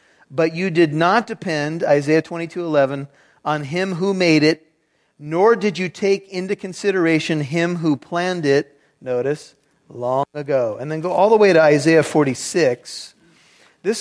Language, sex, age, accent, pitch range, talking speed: English, male, 40-59, American, 150-180 Hz, 160 wpm